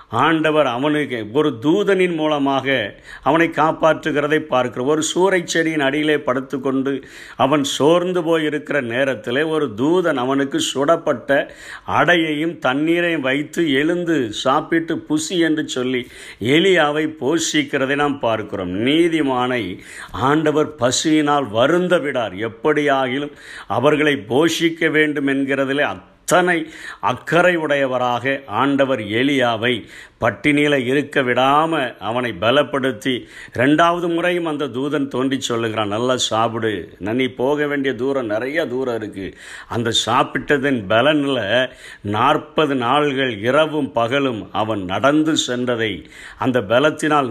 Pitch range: 125-155 Hz